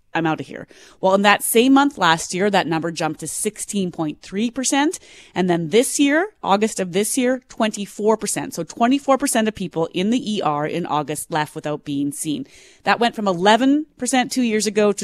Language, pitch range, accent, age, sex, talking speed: English, 165-220 Hz, American, 30-49, female, 185 wpm